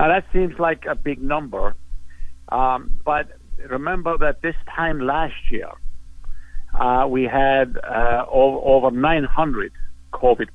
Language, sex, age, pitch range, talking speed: English, male, 60-79, 115-150 Hz, 120 wpm